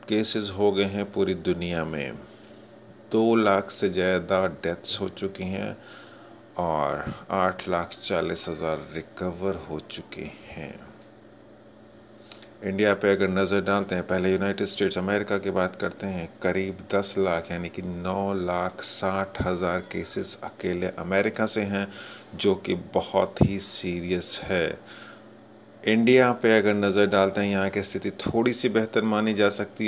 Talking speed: 145 wpm